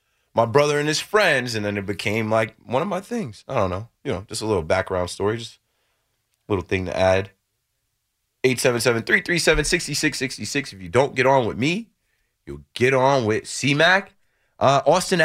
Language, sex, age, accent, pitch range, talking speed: English, male, 30-49, American, 110-135 Hz, 190 wpm